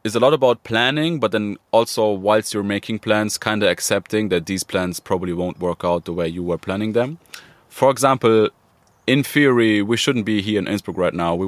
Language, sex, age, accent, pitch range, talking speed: English, male, 20-39, German, 85-100 Hz, 215 wpm